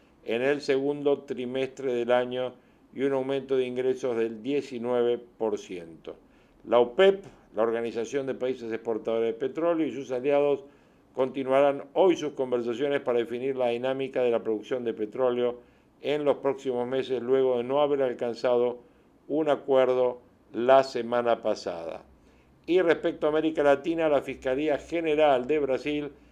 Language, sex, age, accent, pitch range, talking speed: Spanish, male, 50-69, Argentinian, 125-145 Hz, 140 wpm